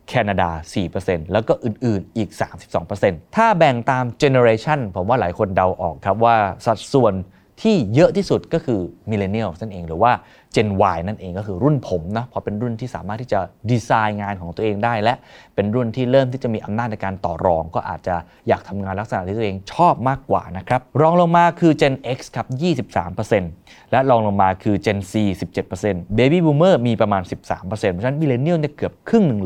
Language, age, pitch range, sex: Thai, 20-39, 95-130 Hz, male